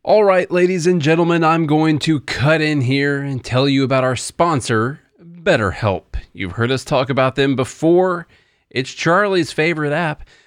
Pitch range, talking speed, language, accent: 115-160 Hz, 165 wpm, English, American